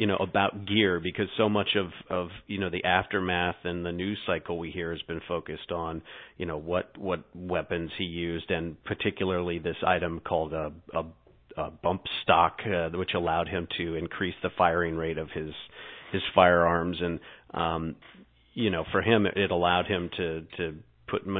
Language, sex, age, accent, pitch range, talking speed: English, male, 40-59, American, 85-100 Hz, 180 wpm